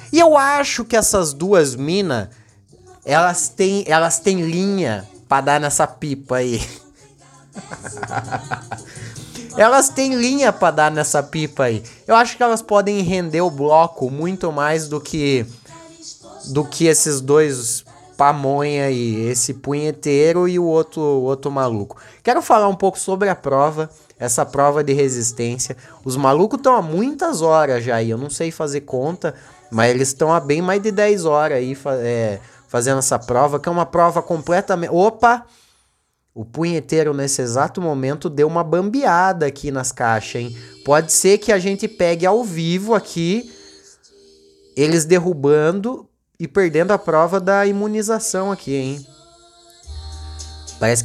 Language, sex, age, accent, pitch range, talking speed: Portuguese, male, 20-39, Brazilian, 130-185 Hz, 150 wpm